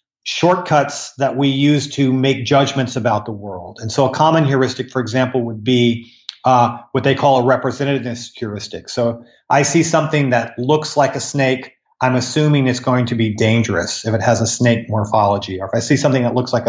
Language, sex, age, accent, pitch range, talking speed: English, male, 40-59, American, 120-145 Hz, 200 wpm